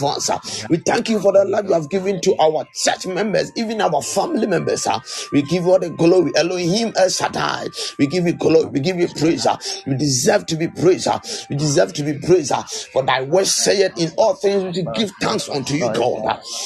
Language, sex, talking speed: English, male, 200 wpm